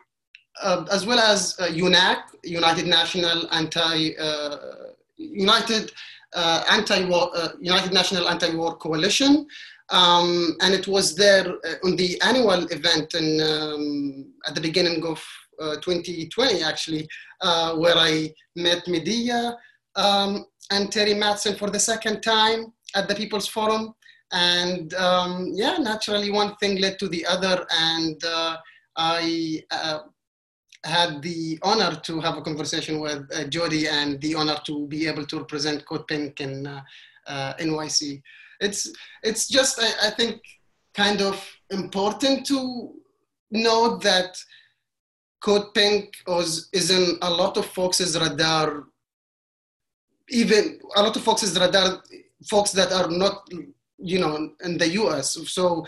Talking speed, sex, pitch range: 140 wpm, male, 165-205 Hz